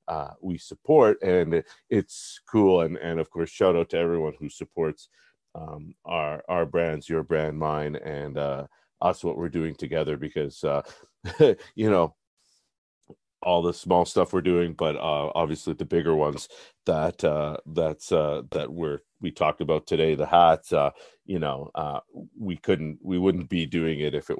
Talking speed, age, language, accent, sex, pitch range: 175 wpm, 40-59, English, American, male, 75-90 Hz